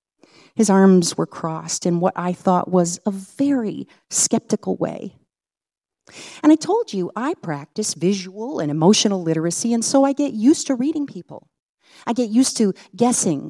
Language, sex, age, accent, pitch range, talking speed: English, female, 40-59, American, 170-225 Hz, 160 wpm